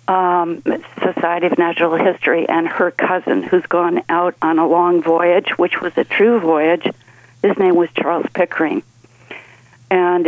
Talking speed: 150 wpm